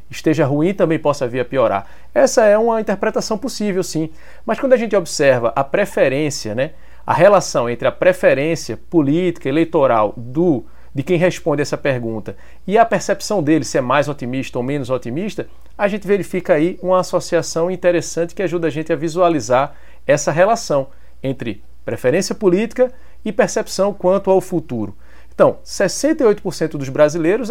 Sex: male